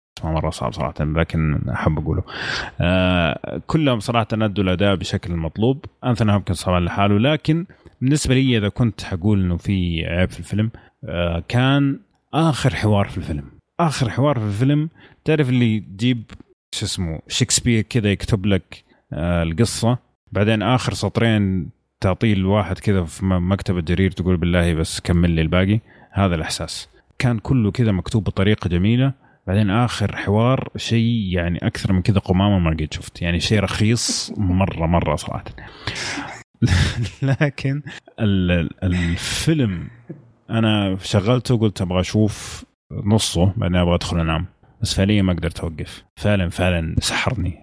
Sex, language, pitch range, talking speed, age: male, Arabic, 90-115 Hz, 135 wpm, 30-49